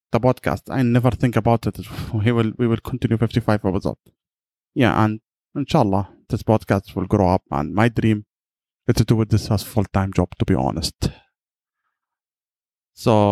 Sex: male